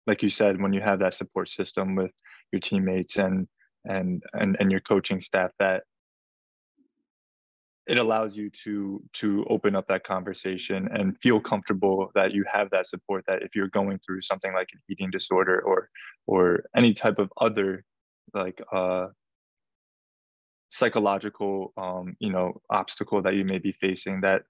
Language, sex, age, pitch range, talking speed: English, male, 20-39, 95-105 Hz, 160 wpm